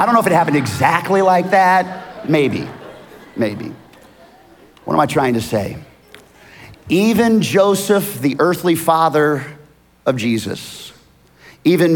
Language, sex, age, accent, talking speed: English, male, 30-49, American, 125 wpm